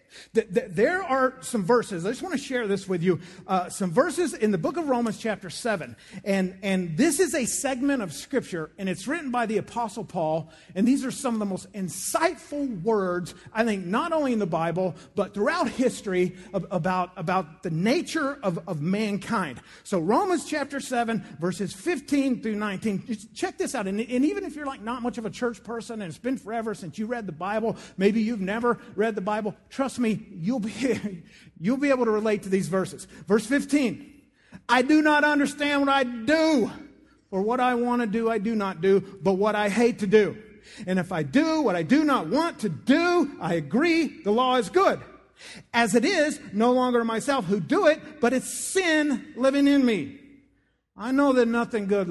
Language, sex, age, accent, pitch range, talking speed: English, male, 50-69, American, 190-270 Hz, 200 wpm